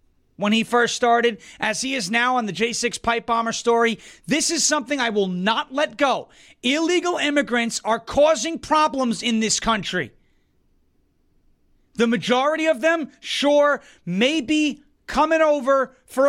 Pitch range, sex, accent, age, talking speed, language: 220-295 Hz, male, American, 30-49, 145 wpm, English